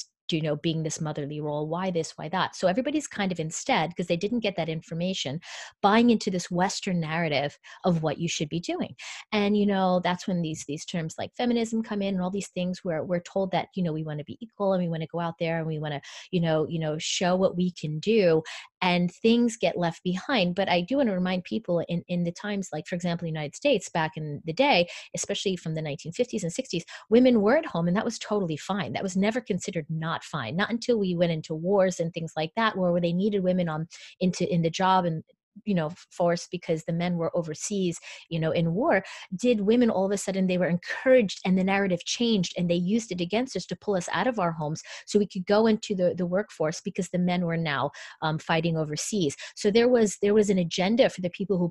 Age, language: 30-49, English